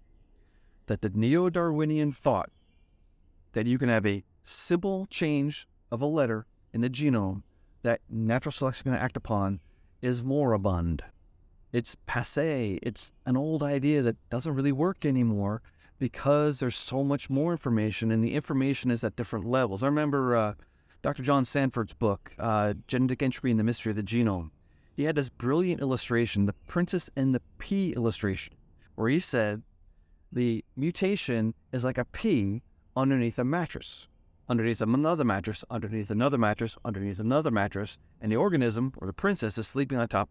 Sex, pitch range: male, 100-140 Hz